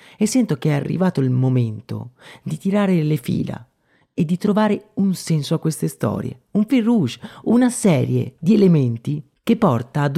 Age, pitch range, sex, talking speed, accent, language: 30-49, 130-190 Hz, male, 170 wpm, native, Italian